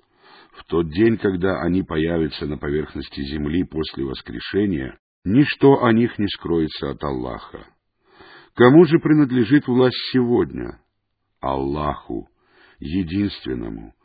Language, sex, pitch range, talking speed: English, male, 85-125 Hz, 105 wpm